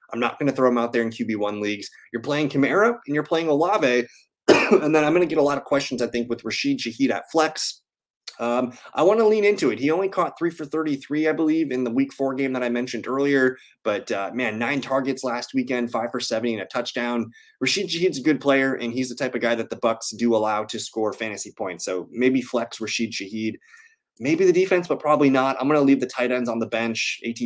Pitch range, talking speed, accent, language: 120-155 Hz, 250 wpm, American, English